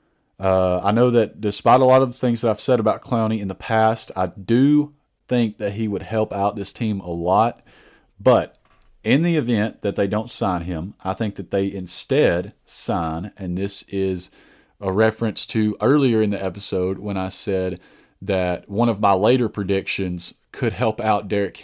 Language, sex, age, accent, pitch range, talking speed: English, male, 40-59, American, 95-110 Hz, 190 wpm